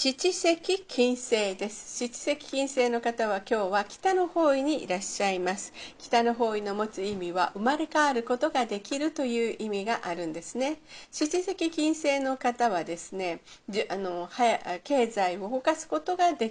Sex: female